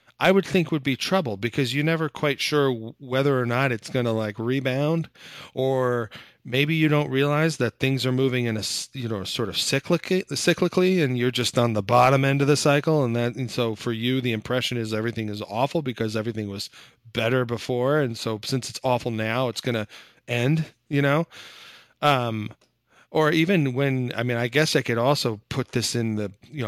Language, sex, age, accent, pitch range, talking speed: English, male, 40-59, American, 115-145 Hz, 200 wpm